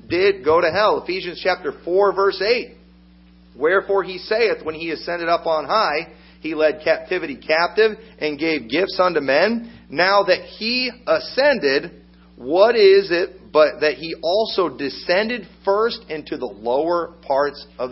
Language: English